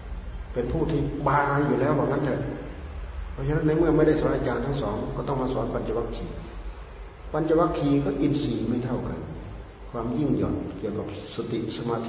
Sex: male